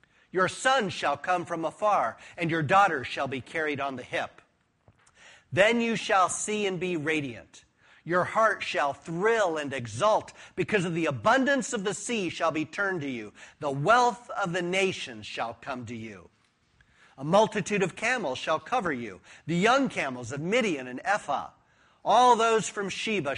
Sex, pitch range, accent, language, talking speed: male, 145-210 Hz, American, English, 170 wpm